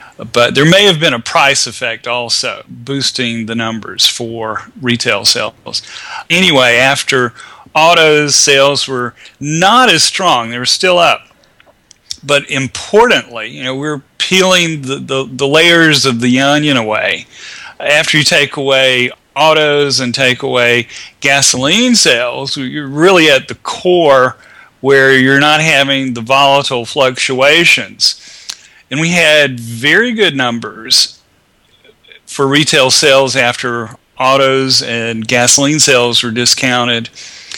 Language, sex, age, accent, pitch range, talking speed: English, male, 40-59, American, 125-150 Hz, 130 wpm